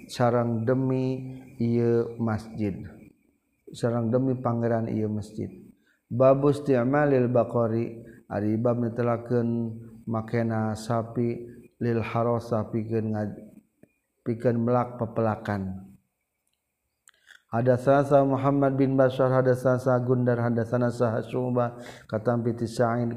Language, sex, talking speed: Indonesian, male, 100 wpm